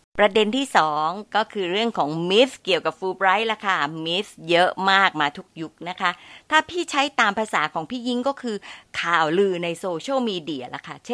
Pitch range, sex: 175-245 Hz, female